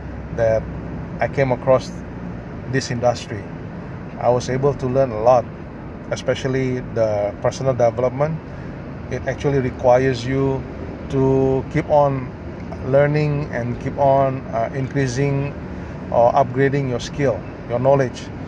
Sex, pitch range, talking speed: male, 120-145 Hz, 120 wpm